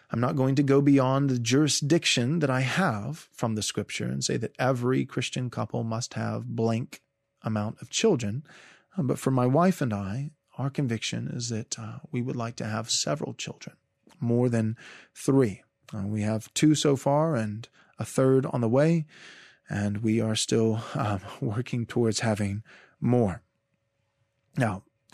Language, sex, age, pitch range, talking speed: English, male, 30-49, 115-145 Hz, 165 wpm